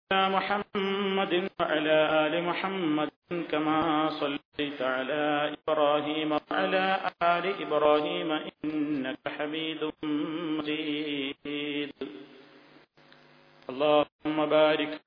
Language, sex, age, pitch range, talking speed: Malayalam, male, 50-69, 150-175 Hz, 65 wpm